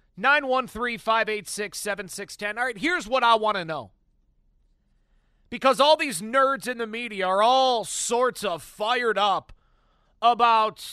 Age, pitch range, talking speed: 40-59, 200-255 Hz, 135 wpm